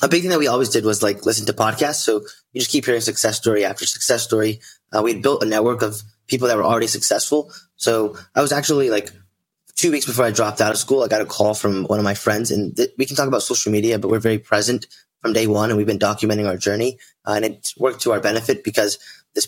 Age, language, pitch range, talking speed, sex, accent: 20-39, English, 105-120 Hz, 260 wpm, male, American